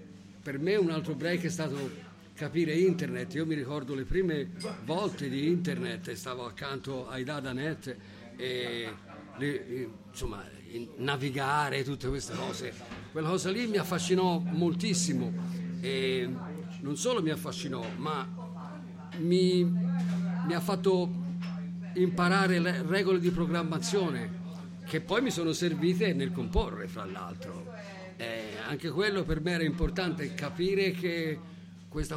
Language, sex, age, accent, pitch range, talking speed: Italian, male, 50-69, native, 145-180 Hz, 125 wpm